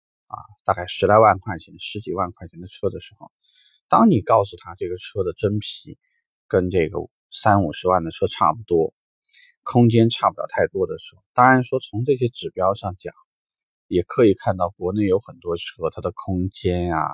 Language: Chinese